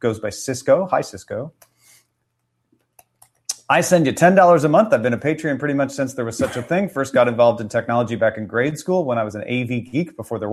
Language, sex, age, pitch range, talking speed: English, male, 30-49, 120-165 Hz, 230 wpm